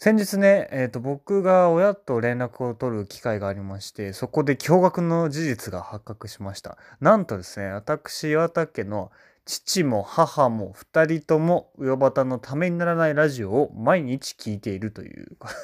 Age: 20-39